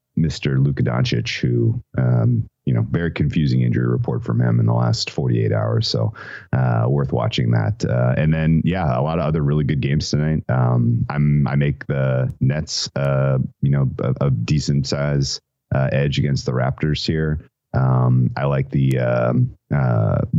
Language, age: English, 30-49